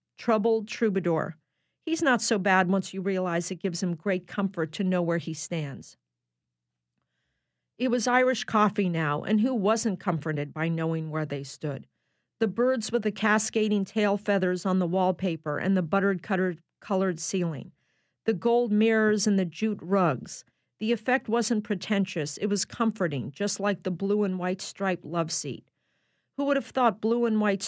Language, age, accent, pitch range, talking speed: English, 50-69, American, 170-205 Hz, 165 wpm